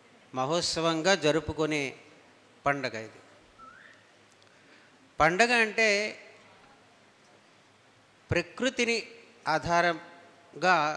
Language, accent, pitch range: English, Indian, 145-195 Hz